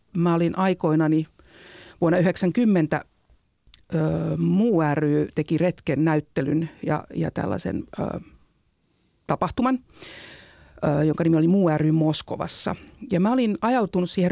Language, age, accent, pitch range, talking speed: Finnish, 50-69, native, 155-180 Hz, 105 wpm